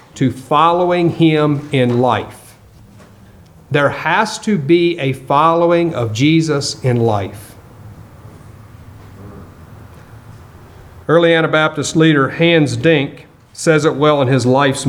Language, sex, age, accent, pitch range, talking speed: English, male, 50-69, American, 120-165 Hz, 105 wpm